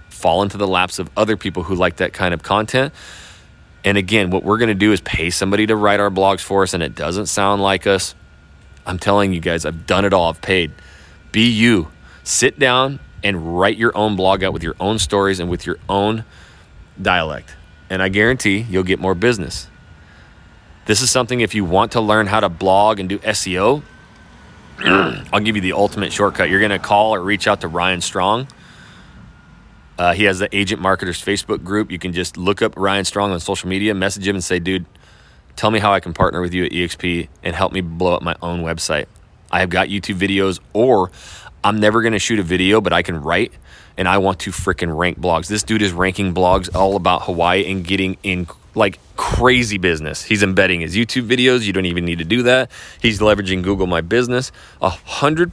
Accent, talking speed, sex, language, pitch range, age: American, 215 wpm, male, English, 90-105 Hz, 30-49